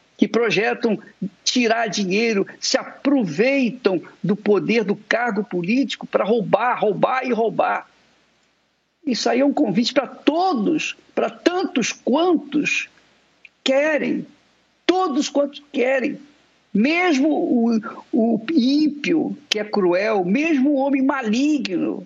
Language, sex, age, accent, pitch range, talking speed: Portuguese, male, 50-69, Brazilian, 225-295 Hz, 110 wpm